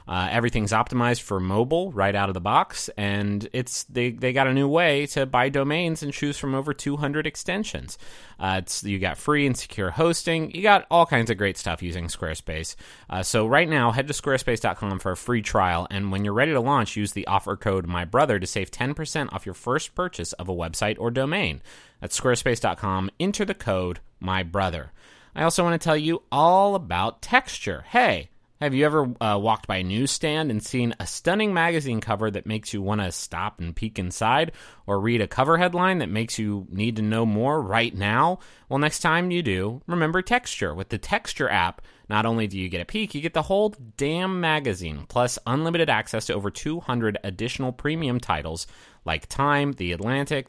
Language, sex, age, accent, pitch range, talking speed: English, male, 30-49, American, 100-155 Hz, 200 wpm